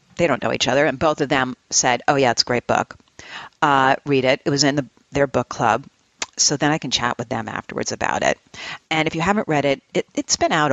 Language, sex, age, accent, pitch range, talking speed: English, female, 50-69, American, 130-165 Hz, 245 wpm